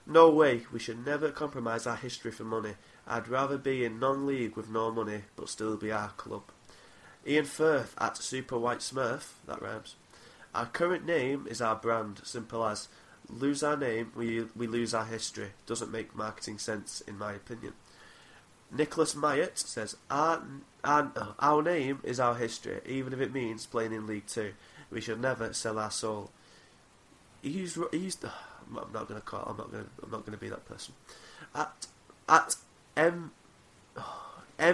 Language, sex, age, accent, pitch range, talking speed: English, male, 20-39, British, 110-150 Hz, 170 wpm